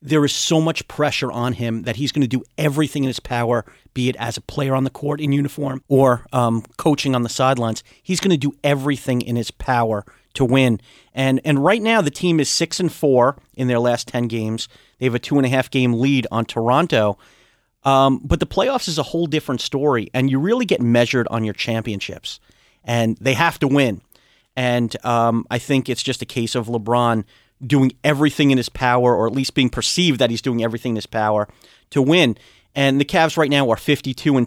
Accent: American